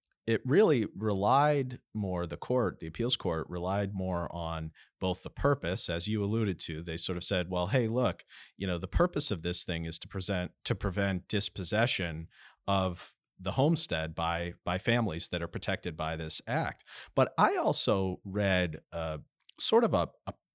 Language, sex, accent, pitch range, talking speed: English, male, American, 90-130 Hz, 175 wpm